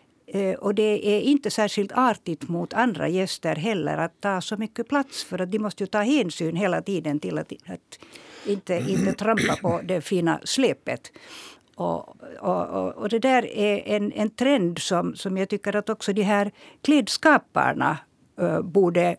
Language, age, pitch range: Swedish, 60-79, 175-230 Hz